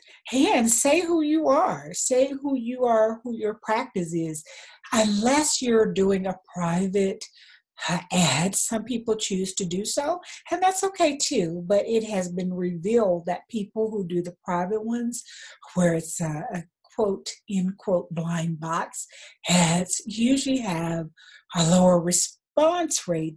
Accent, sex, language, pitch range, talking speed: American, female, English, 175-230 Hz, 150 wpm